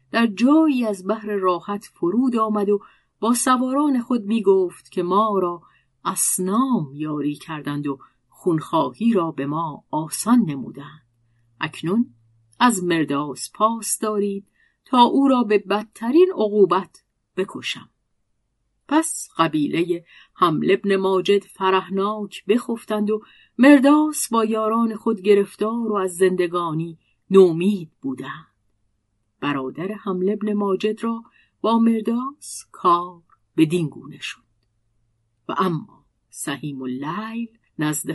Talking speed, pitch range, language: 115 wpm, 160-225 Hz, Persian